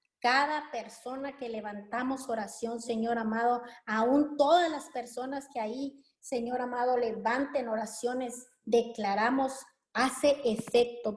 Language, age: Spanish, 30-49